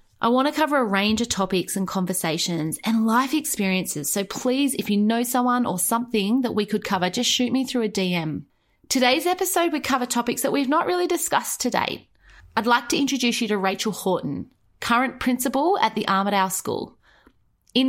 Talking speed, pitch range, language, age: 195 wpm, 190-245 Hz, English, 30-49